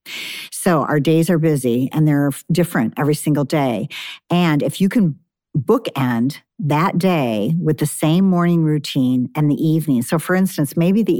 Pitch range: 140-175 Hz